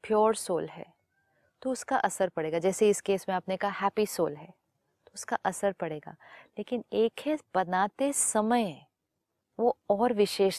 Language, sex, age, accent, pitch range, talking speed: Hindi, female, 30-49, native, 185-235 Hz, 160 wpm